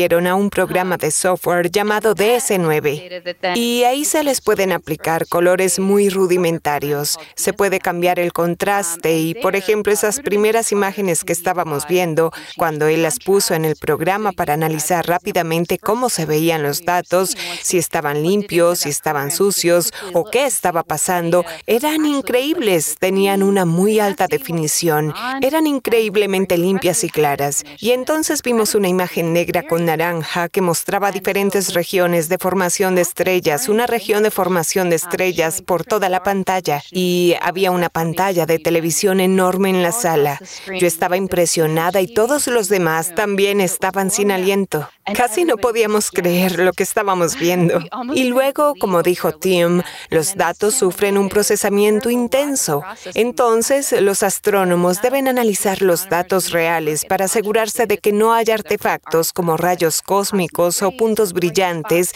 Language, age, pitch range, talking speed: Spanish, 30-49, 170-205 Hz, 150 wpm